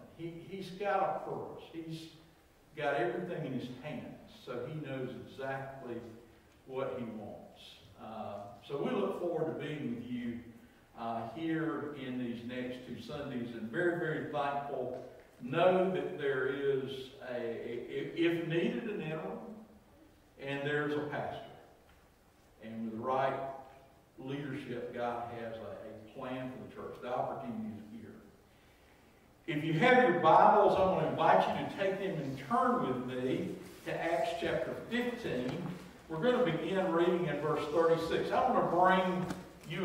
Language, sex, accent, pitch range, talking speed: English, male, American, 125-175 Hz, 150 wpm